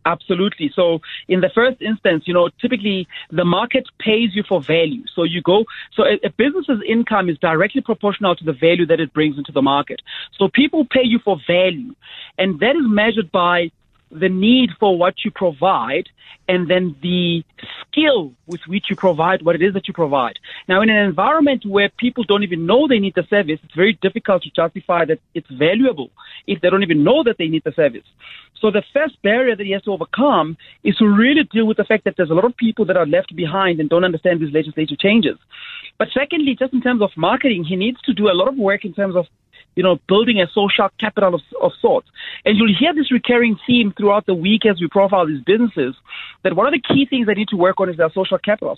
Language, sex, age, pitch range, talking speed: English, male, 30-49, 175-230 Hz, 230 wpm